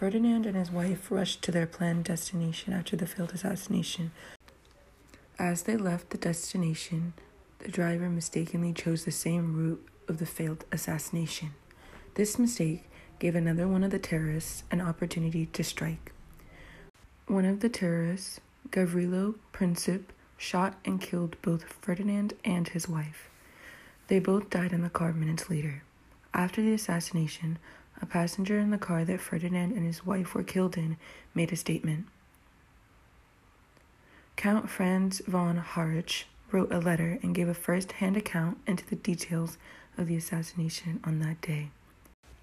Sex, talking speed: female, 145 wpm